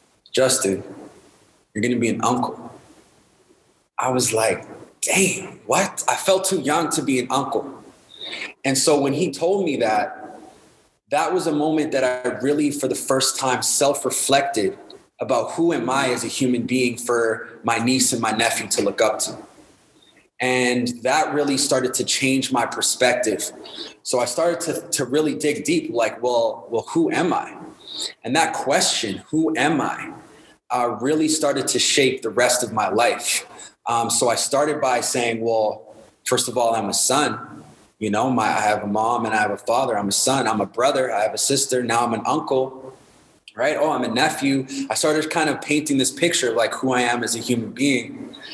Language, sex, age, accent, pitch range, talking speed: English, male, 20-39, American, 120-150 Hz, 190 wpm